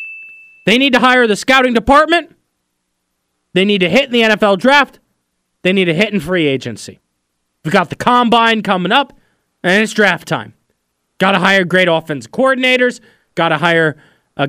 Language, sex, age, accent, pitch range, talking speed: English, male, 30-49, American, 185-280 Hz, 175 wpm